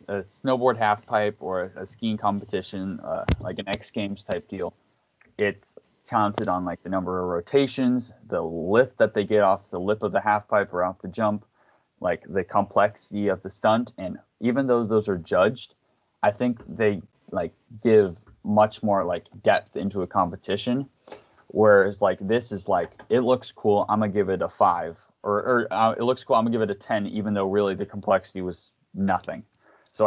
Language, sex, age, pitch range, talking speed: English, male, 20-39, 95-110 Hz, 200 wpm